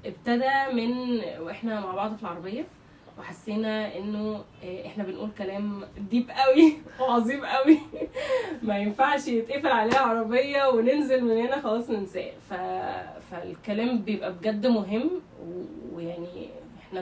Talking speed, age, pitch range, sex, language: 115 wpm, 20-39, 190-265 Hz, female, Arabic